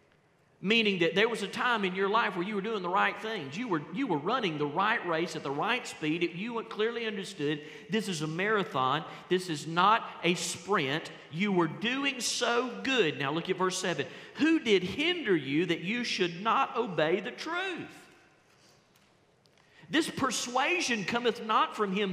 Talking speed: 185 wpm